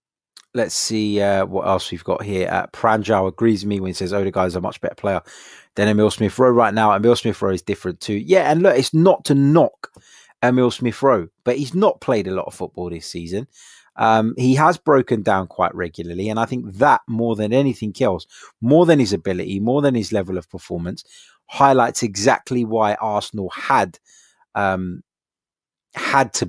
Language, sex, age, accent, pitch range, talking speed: English, male, 20-39, British, 100-125 Hz, 200 wpm